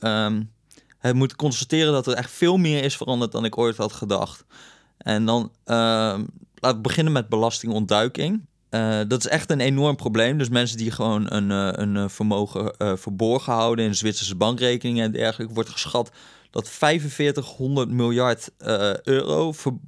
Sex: male